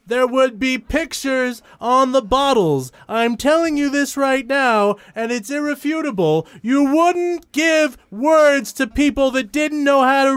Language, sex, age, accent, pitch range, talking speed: English, male, 30-49, American, 235-305 Hz, 155 wpm